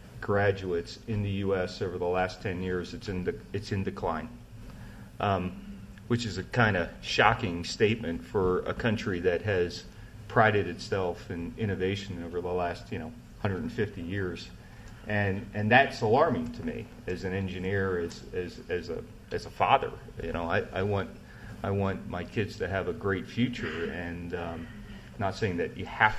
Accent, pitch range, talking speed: American, 90-110 Hz, 175 wpm